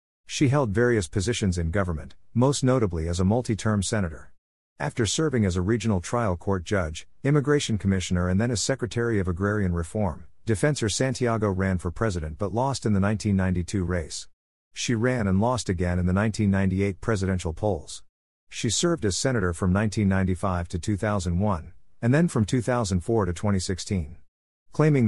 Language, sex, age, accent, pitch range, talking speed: English, male, 50-69, American, 90-115 Hz, 155 wpm